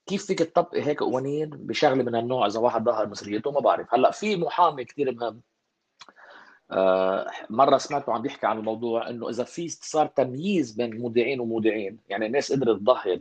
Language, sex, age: Arabic, male, 30-49